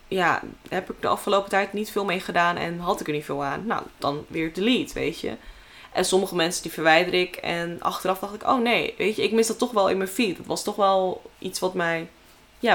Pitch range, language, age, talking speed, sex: 165-210 Hz, Dutch, 10-29, 250 wpm, female